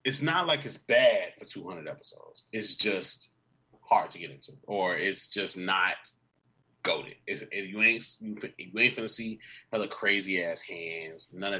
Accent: American